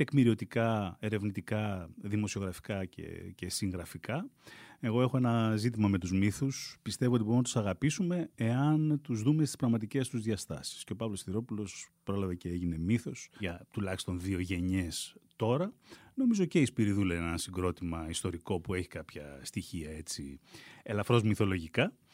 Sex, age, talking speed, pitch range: male, 30-49, 145 wpm, 90-130 Hz